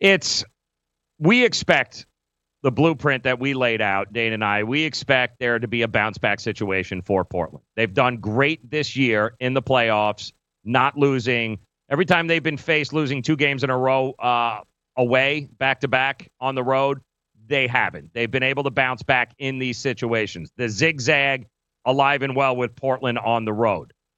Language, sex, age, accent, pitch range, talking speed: English, male, 40-59, American, 115-145 Hz, 180 wpm